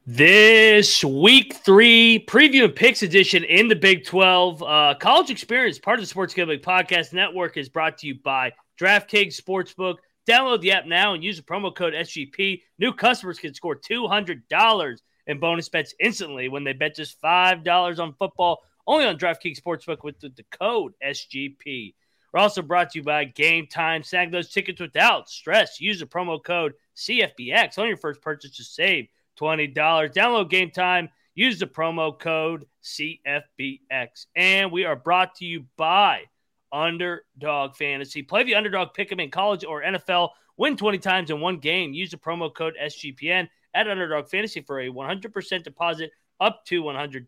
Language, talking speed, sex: English, 175 wpm, male